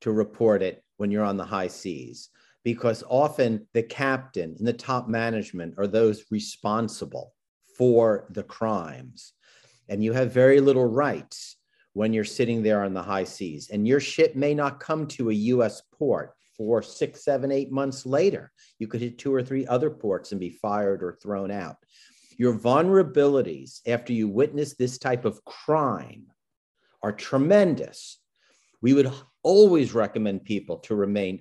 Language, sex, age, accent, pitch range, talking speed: English, male, 50-69, American, 110-150 Hz, 160 wpm